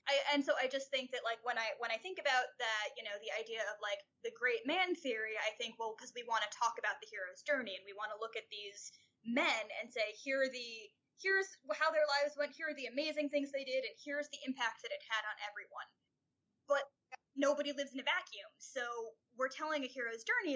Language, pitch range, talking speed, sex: English, 215-280 Hz, 240 wpm, female